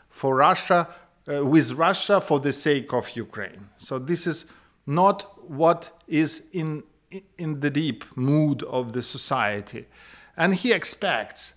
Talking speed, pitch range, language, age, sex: 140 wpm, 120-160 Hz, English, 50-69, male